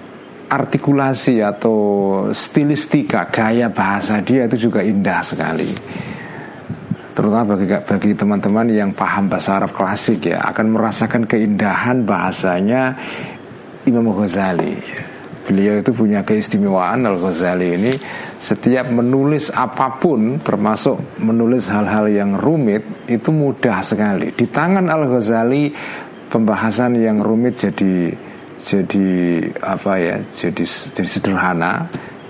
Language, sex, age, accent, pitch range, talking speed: Indonesian, male, 40-59, native, 105-140 Hz, 110 wpm